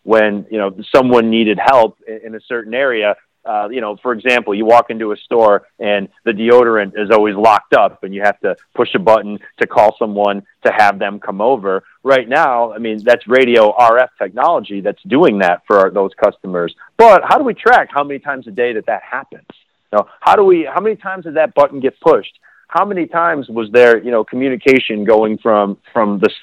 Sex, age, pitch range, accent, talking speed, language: male, 30-49, 110-150 Hz, American, 215 wpm, English